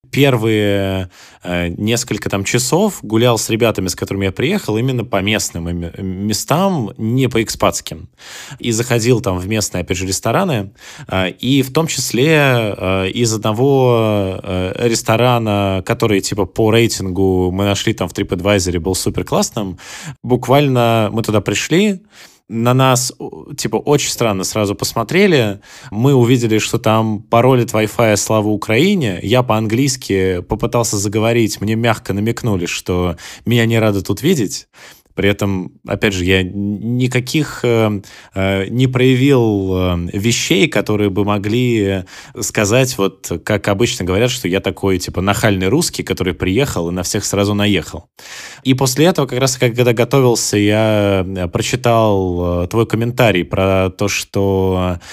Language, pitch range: Russian, 95-120 Hz